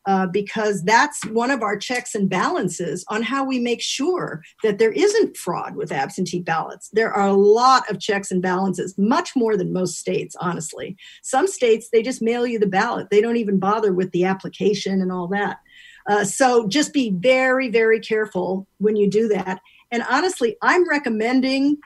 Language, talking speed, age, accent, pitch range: English, 185 wpm, 50-69, American, 195-235 Hz